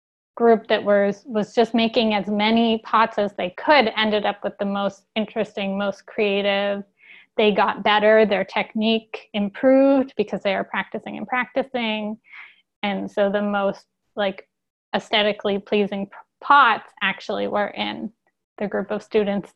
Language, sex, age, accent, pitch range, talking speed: English, female, 10-29, American, 200-225 Hz, 145 wpm